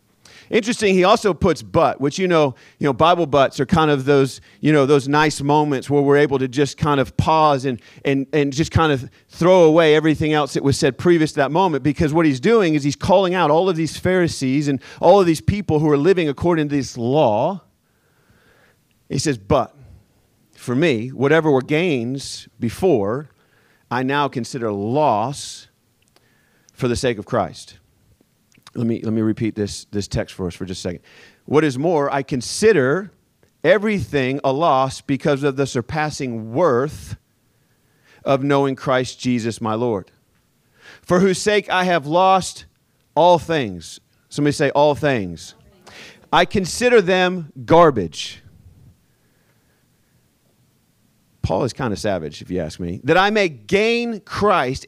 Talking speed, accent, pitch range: 165 wpm, American, 120-160 Hz